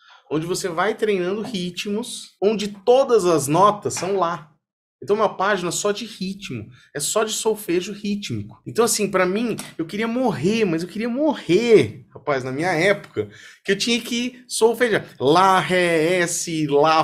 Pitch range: 150-220 Hz